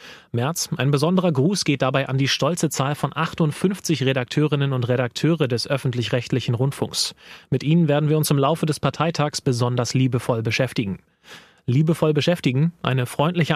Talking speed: 150 wpm